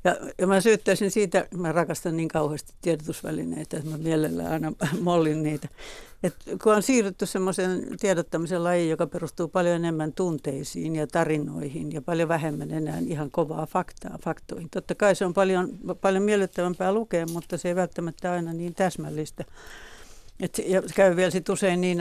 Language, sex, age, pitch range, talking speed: Finnish, female, 60-79, 160-185 Hz, 160 wpm